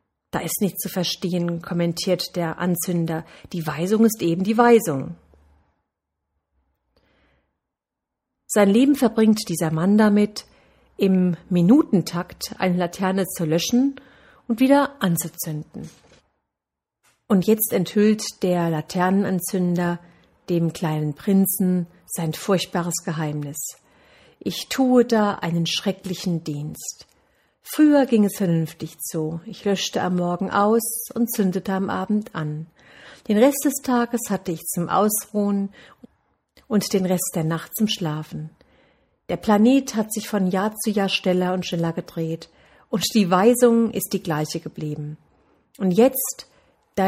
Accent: German